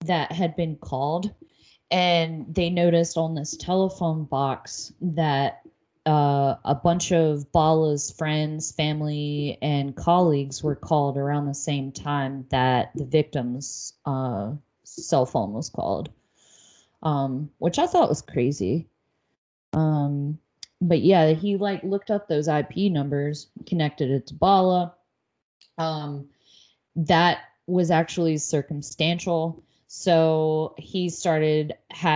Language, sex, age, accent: English, female, 20-39, American